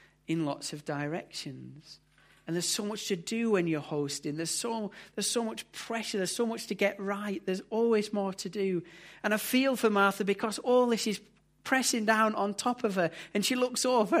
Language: English